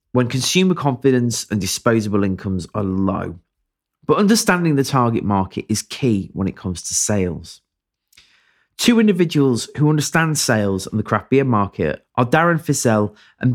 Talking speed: 150 wpm